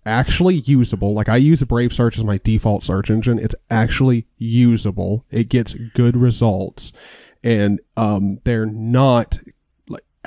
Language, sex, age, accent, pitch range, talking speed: English, male, 30-49, American, 110-135 Hz, 145 wpm